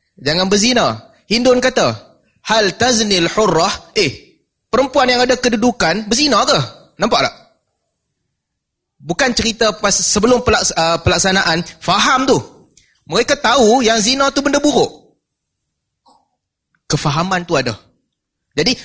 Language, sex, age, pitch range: Malay, male, 30-49, 195-245 Hz